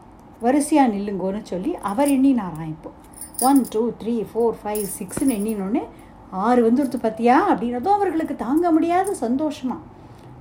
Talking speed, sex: 120 wpm, female